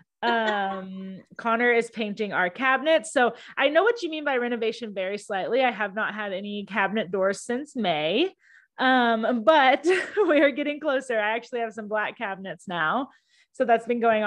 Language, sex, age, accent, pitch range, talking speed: English, female, 20-39, American, 200-255 Hz, 175 wpm